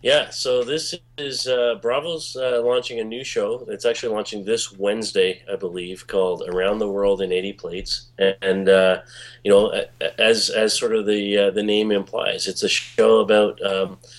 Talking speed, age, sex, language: 180 wpm, 30-49, male, English